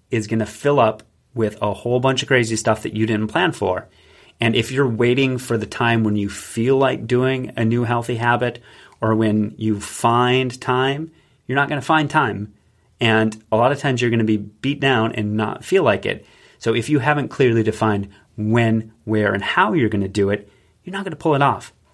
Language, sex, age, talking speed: English, male, 30-49, 225 wpm